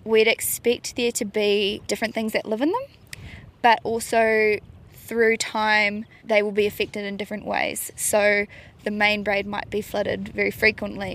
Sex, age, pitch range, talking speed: female, 20-39, 200-225 Hz, 165 wpm